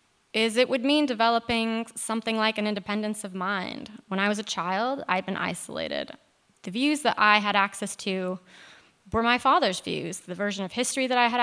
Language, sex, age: English, female, 20-39